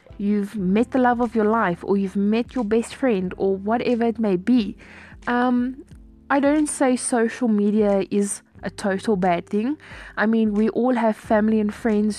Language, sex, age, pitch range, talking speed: English, female, 20-39, 195-235 Hz, 180 wpm